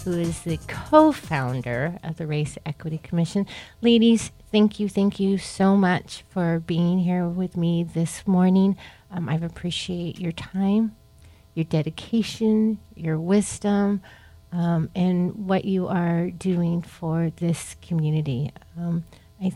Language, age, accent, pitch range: English, 40-59, American, 160-195 Hz